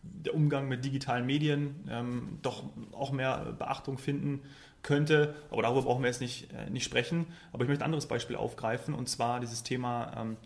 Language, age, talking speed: German, 30-49, 190 wpm